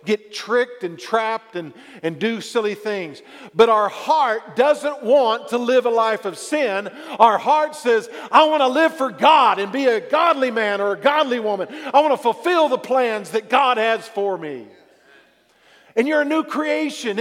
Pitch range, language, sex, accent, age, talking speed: 190-260 Hz, English, male, American, 50-69, 190 wpm